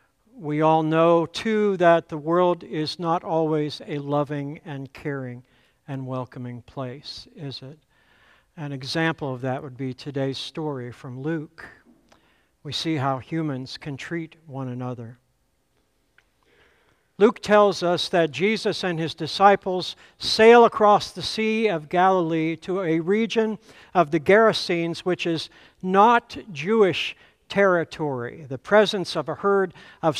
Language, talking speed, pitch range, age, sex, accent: English, 135 wpm, 140-190 Hz, 60-79, male, American